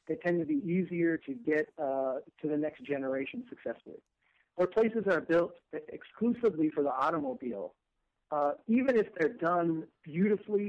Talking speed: 150 wpm